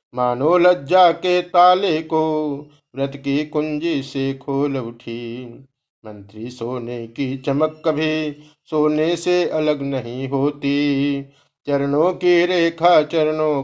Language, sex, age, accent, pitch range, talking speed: Hindi, male, 50-69, native, 125-165 Hz, 110 wpm